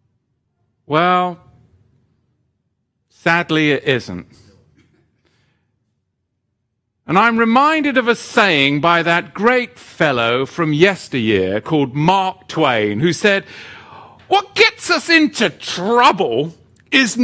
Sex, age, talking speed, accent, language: male, 50-69, 95 wpm, British, English